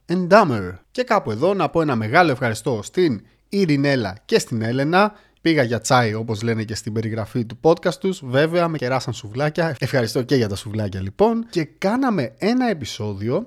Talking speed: 170 wpm